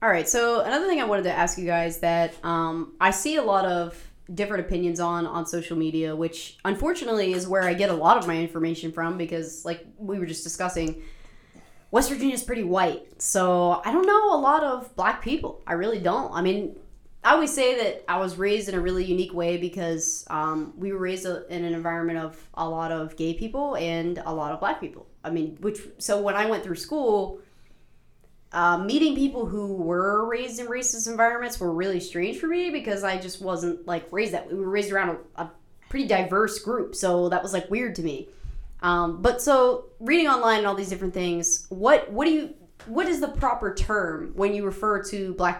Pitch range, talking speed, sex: 170-230 Hz, 215 wpm, female